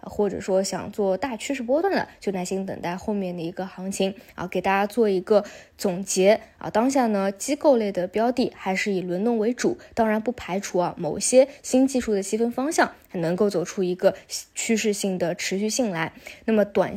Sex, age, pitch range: female, 20-39, 190-230 Hz